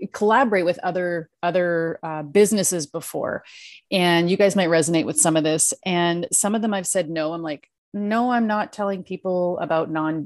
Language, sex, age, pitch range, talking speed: English, female, 30-49, 155-185 Hz, 185 wpm